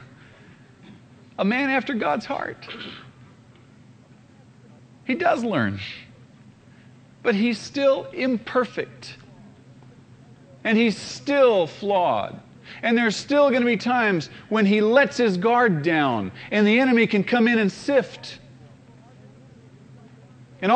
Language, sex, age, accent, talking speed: English, male, 40-59, American, 105 wpm